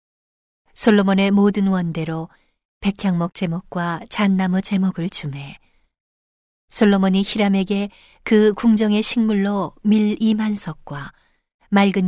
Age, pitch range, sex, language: 40-59, 175-210 Hz, female, Korean